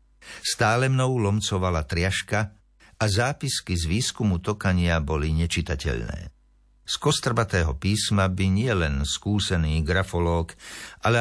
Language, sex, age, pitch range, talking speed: Slovak, male, 60-79, 85-105 Hz, 100 wpm